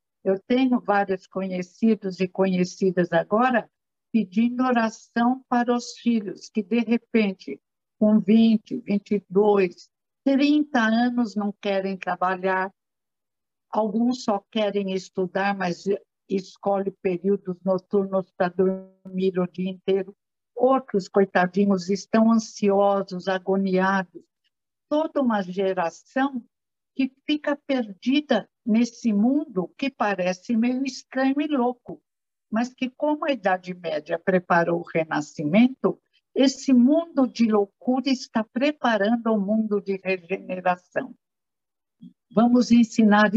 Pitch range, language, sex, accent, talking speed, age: 190-245 Hz, Portuguese, female, Brazilian, 105 wpm, 60-79